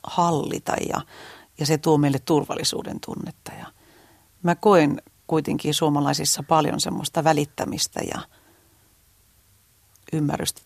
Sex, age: female, 40-59